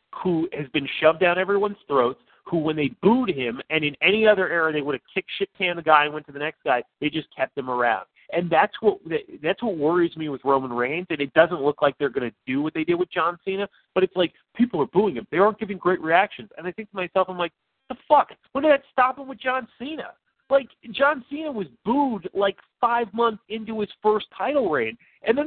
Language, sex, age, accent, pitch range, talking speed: English, male, 40-59, American, 165-255 Hz, 245 wpm